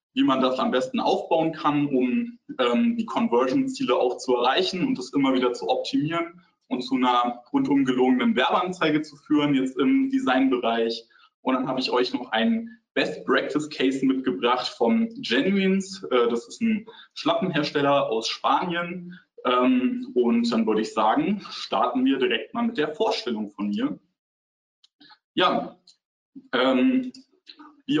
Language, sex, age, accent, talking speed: German, male, 20-39, German, 145 wpm